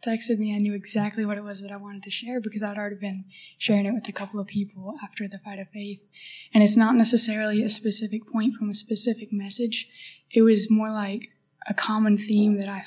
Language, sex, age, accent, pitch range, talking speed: English, female, 10-29, American, 195-220 Hz, 230 wpm